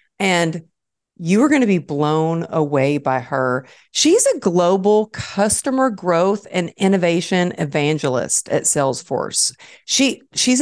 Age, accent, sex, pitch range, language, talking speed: 50-69, American, female, 165-220 Hz, English, 125 wpm